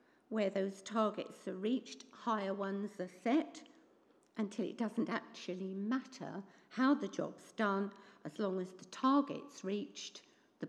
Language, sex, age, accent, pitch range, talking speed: English, female, 50-69, British, 190-260 Hz, 140 wpm